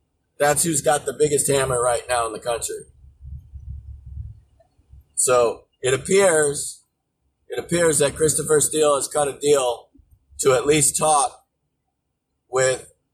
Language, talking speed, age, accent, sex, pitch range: English, 130 wpm, 30-49, American, male, 120-165 Hz